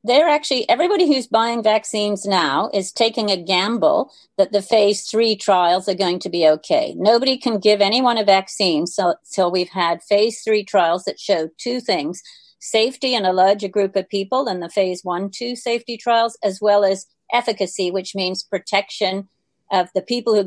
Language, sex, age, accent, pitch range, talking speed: English, female, 50-69, American, 185-225 Hz, 185 wpm